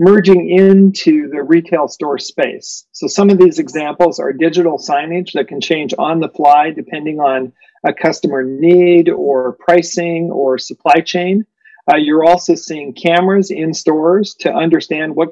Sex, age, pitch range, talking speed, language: male, 40-59, 150-190 Hz, 155 wpm, English